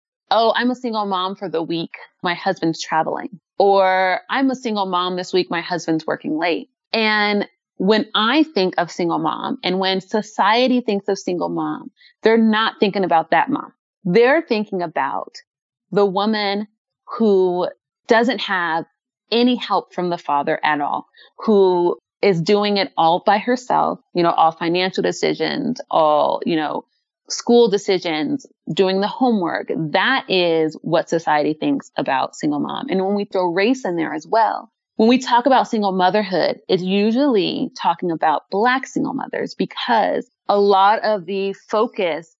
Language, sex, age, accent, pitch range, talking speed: English, female, 30-49, American, 175-225 Hz, 160 wpm